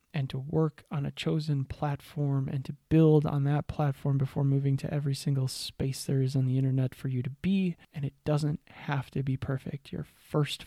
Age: 20-39